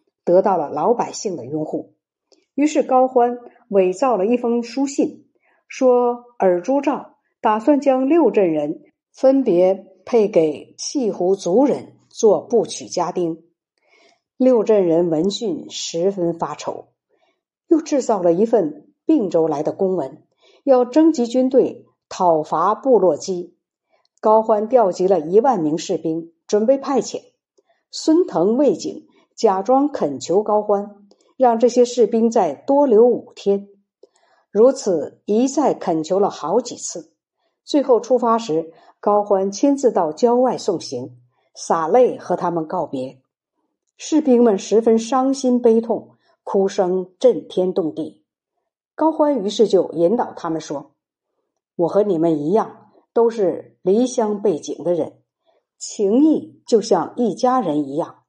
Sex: female